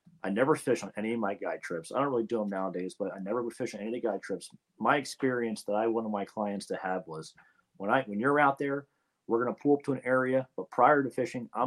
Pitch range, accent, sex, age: 105-130 Hz, American, male, 30-49